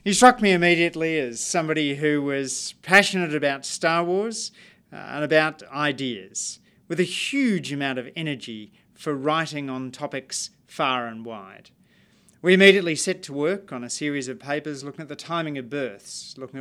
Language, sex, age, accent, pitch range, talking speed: English, male, 40-59, Australian, 140-170 Hz, 165 wpm